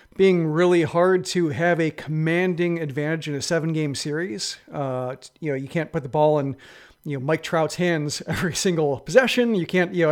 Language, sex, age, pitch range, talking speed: English, male, 40-59, 150-195 Hz, 200 wpm